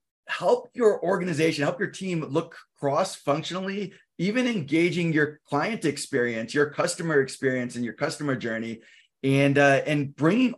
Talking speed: 135 wpm